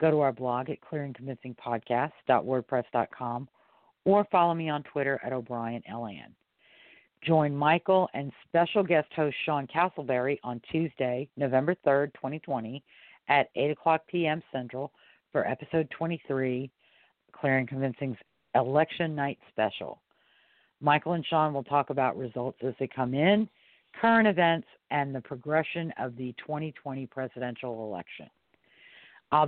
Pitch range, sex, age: 125-155 Hz, female, 50-69